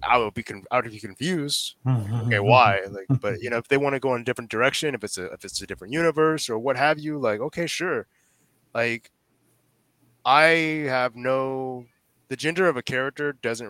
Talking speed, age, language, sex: 195 wpm, 20-39, English, male